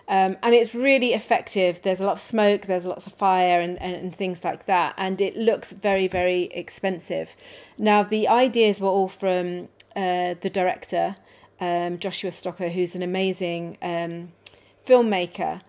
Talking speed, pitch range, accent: 165 wpm, 180-205 Hz, British